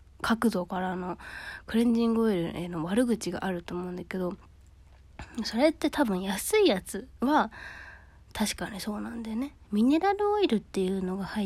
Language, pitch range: Japanese, 175-235 Hz